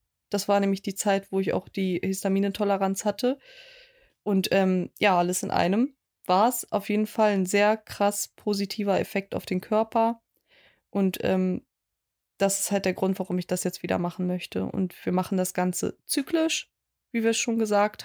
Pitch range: 185-215 Hz